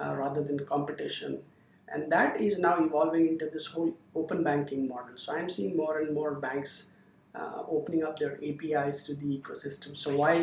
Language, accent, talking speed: English, Indian, 185 wpm